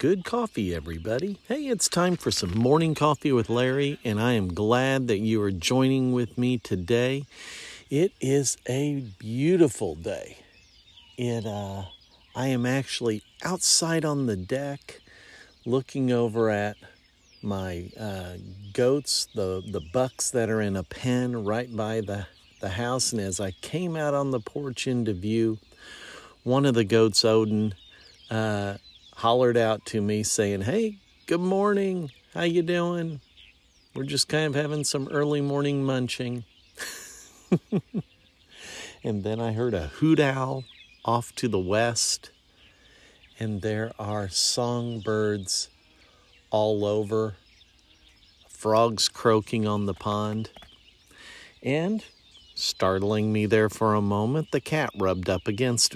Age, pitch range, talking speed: 50-69, 105-135 Hz, 135 wpm